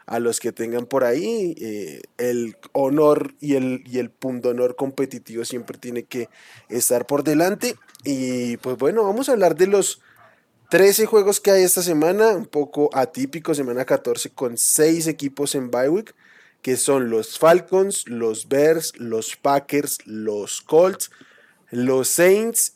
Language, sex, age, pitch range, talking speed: Spanish, male, 20-39, 120-170 Hz, 150 wpm